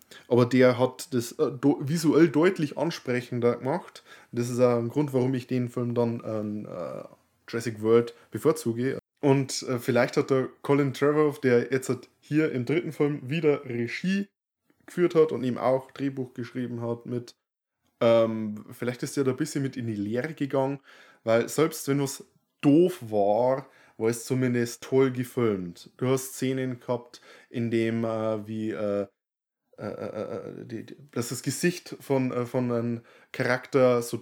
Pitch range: 120-135 Hz